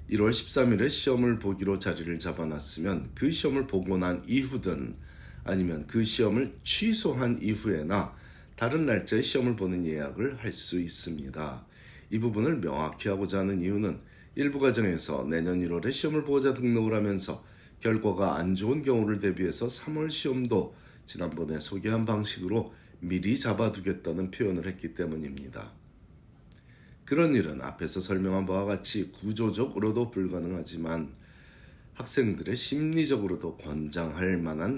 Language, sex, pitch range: Korean, male, 85-115 Hz